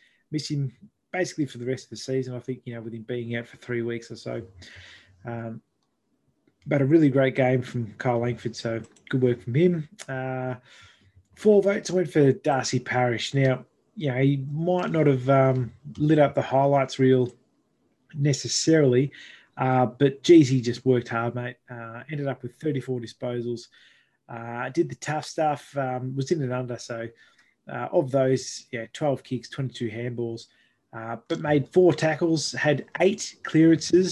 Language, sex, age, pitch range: English, male, 20-39, 120-145 Hz